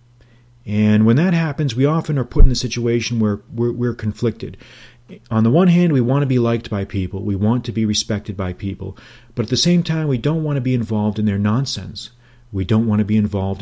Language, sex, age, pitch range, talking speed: English, male, 40-59, 105-125 Hz, 230 wpm